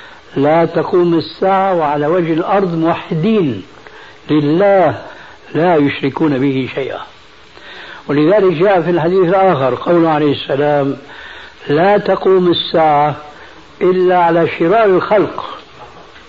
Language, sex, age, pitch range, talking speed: Arabic, male, 60-79, 140-185 Hz, 100 wpm